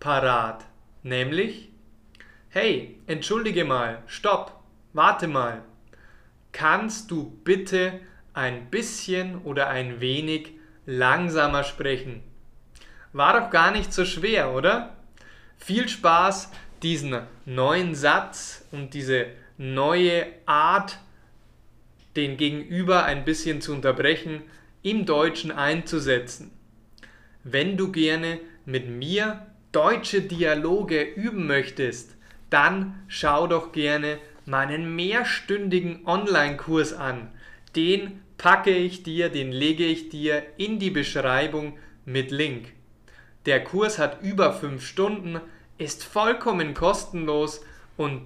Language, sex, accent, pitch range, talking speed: German, male, German, 135-185 Hz, 100 wpm